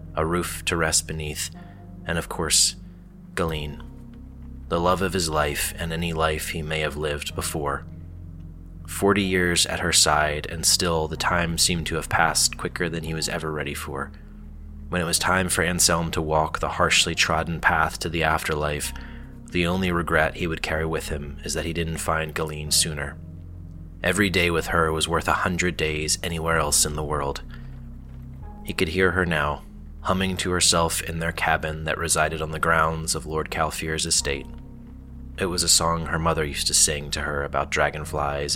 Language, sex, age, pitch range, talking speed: English, male, 30-49, 75-85 Hz, 185 wpm